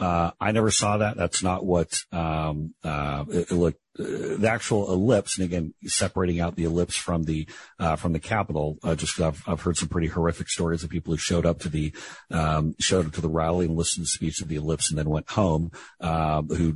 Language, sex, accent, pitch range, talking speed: English, male, American, 80-90 Hz, 235 wpm